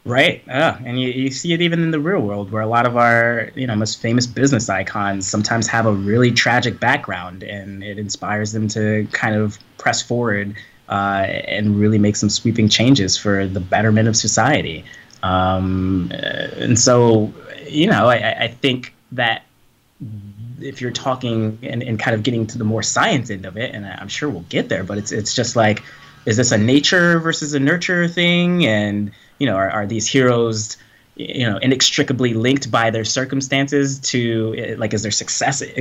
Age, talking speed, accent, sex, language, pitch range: 20-39, 190 wpm, American, male, English, 105-130 Hz